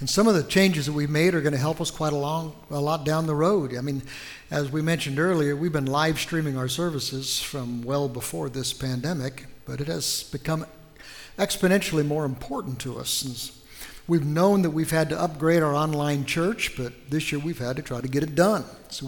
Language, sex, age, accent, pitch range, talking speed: English, male, 60-79, American, 140-165 Hz, 220 wpm